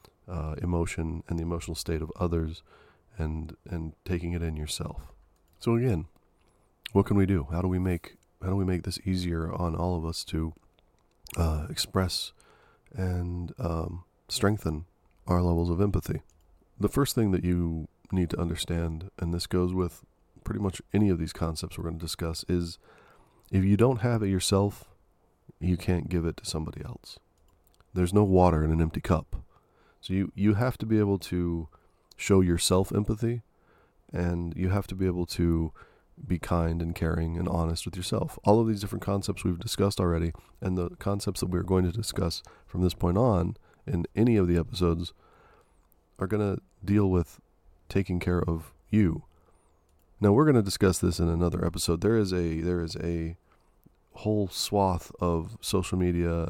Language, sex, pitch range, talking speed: English, male, 85-95 Hz, 175 wpm